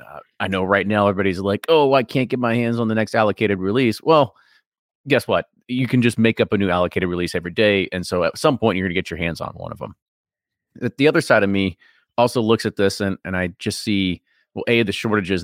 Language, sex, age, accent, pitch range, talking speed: English, male, 30-49, American, 95-115 Hz, 255 wpm